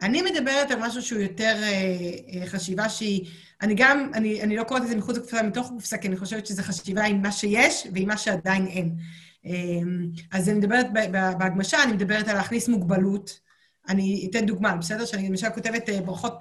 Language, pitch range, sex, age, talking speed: Hebrew, 190-240 Hz, female, 30-49, 200 wpm